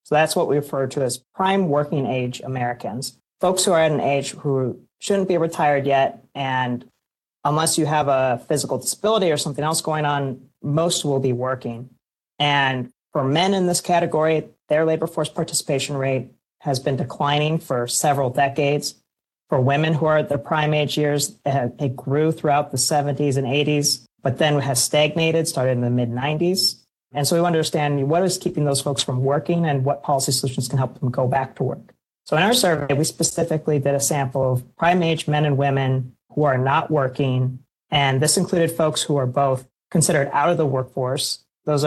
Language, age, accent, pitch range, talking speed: English, 40-59, American, 135-155 Hz, 190 wpm